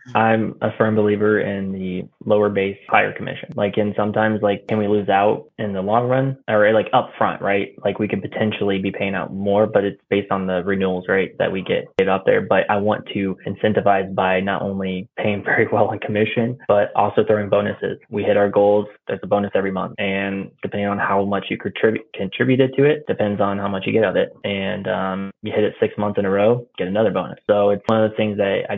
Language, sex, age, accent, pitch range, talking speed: English, male, 20-39, American, 95-105 Hz, 240 wpm